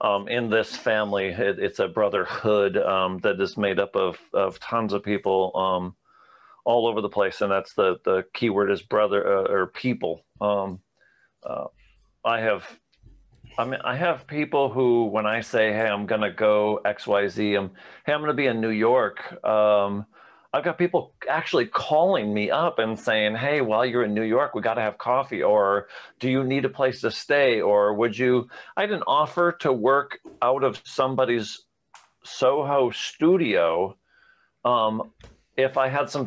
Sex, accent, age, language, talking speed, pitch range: male, American, 40-59, English, 175 wpm, 105-140 Hz